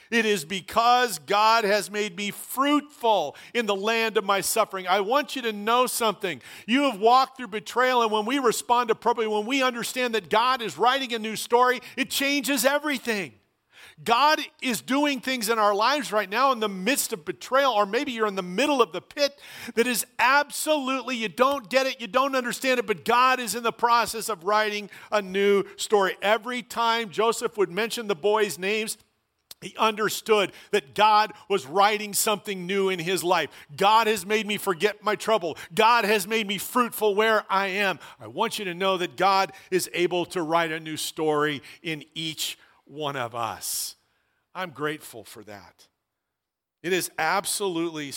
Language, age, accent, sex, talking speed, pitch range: English, 50-69, American, male, 185 wpm, 170-235 Hz